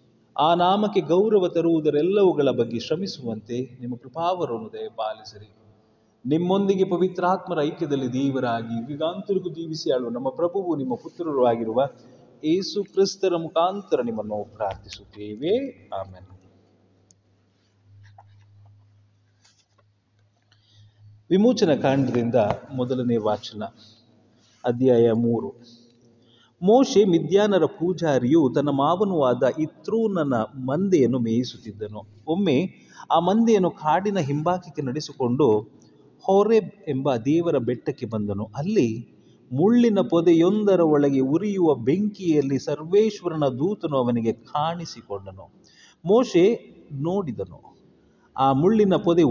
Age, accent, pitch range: 30-49, native, 110-175 Hz